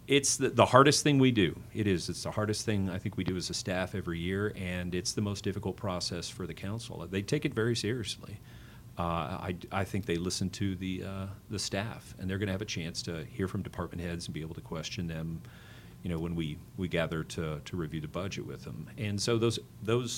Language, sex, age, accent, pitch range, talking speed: English, male, 40-59, American, 90-115 Hz, 240 wpm